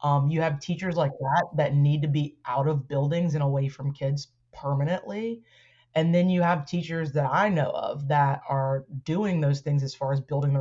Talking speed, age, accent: 210 wpm, 30-49, American